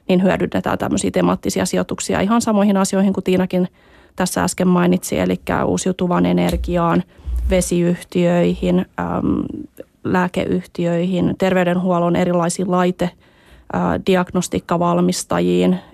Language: Finnish